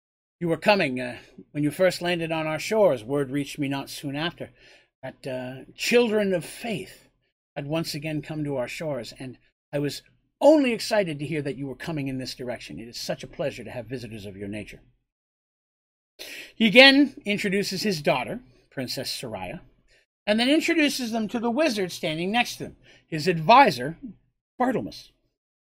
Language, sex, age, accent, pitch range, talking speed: English, male, 50-69, American, 130-195 Hz, 175 wpm